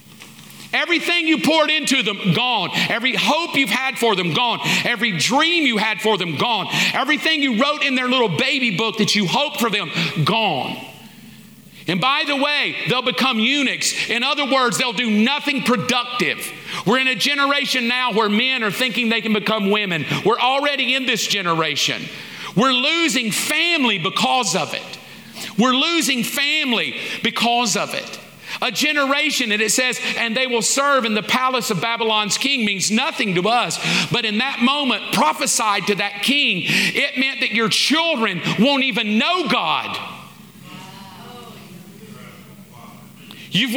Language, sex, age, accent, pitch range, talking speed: English, male, 50-69, American, 210-275 Hz, 160 wpm